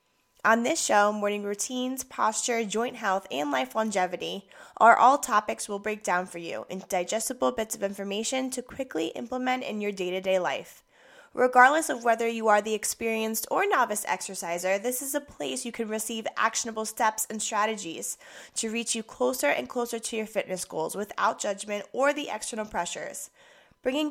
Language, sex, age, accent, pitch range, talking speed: English, female, 10-29, American, 195-245 Hz, 170 wpm